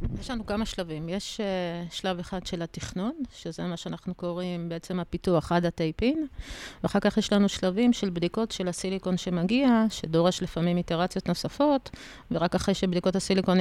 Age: 30-49